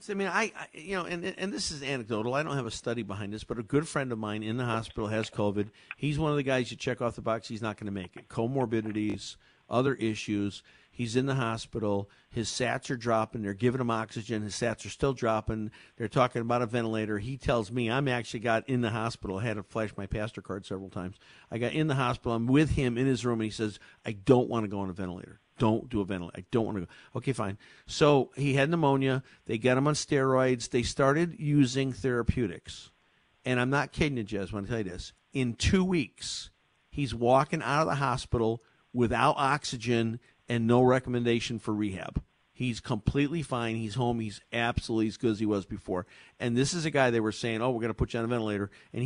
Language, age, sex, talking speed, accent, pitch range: English, 50-69, male, 235 wpm, American, 110-130 Hz